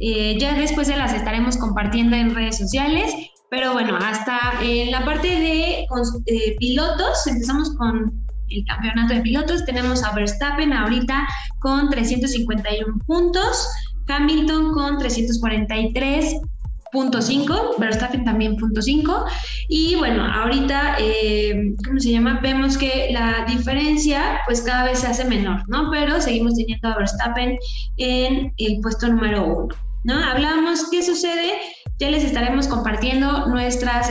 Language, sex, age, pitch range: Spanish, female, 20-39, 230-290 Hz